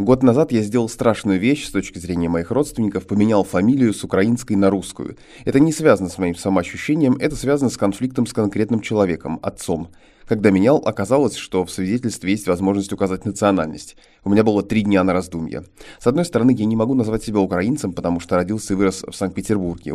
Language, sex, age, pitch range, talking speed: Russian, male, 20-39, 95-115 Hz, 195 wpm